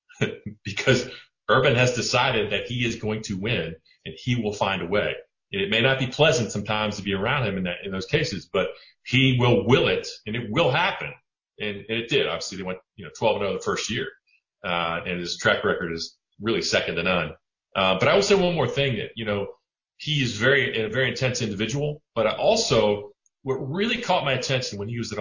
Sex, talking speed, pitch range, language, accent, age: male, 225 wpm, 105-140 Hz, English, American, 40-59